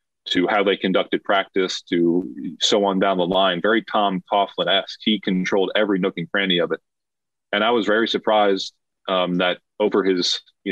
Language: English